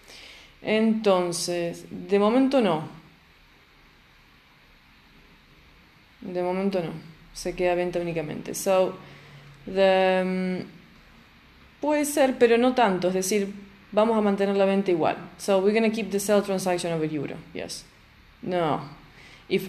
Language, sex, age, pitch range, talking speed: English, female, 20-39, 175-205 Hz, 115 wpm